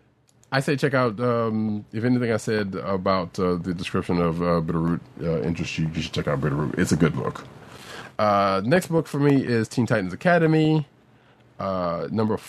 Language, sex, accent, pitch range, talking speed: English, male, American, 90-125 Hz, 185 wpm